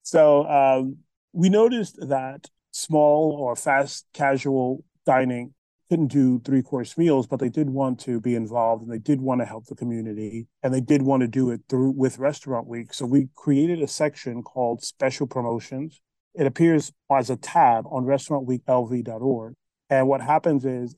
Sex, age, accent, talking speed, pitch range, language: male, 30-49, American, 170 wpm, 125-145 Hz, English